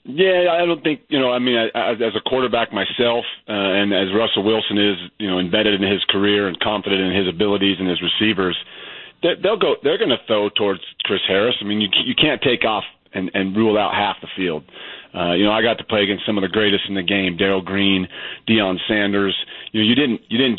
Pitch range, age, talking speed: 100-115 Hz, 30-49, 240 wpm